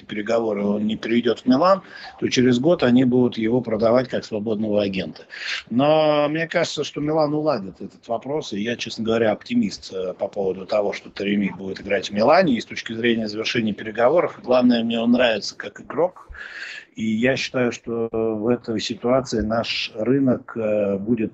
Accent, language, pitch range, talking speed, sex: native, Russian, 105-125 Hz, 170 wpm, male